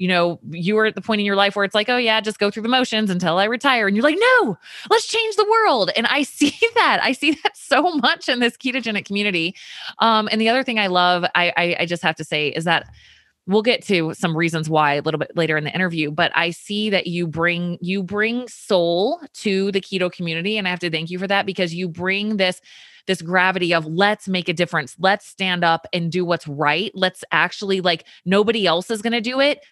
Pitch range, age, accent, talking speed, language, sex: 170-215 Hz, 20-39, American, 245 wpm, English, female